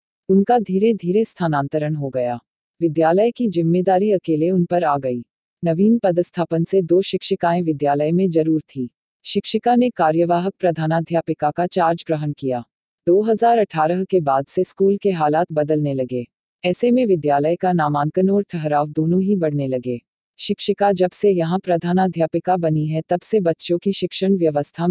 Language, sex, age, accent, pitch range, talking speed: Hindi, female, 40-59, native, 155-190 Hz, 155 wpm